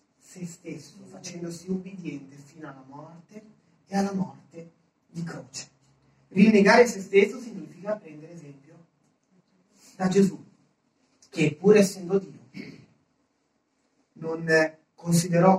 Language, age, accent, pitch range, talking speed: Italian, 40-59, native, 155-230 Hz, 100 wpm